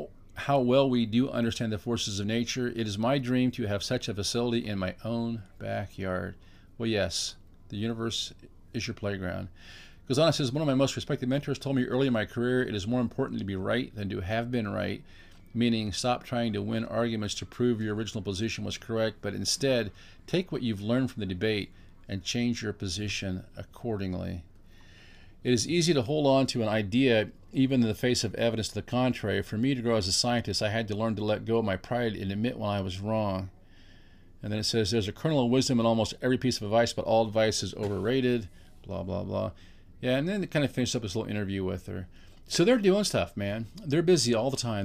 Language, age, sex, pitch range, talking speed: English, 50-69, male, 100-125 Hz, 225 wpm